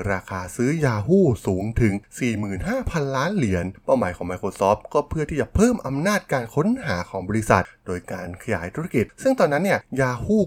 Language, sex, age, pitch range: Thai, male, 20-39, 100-145 Hz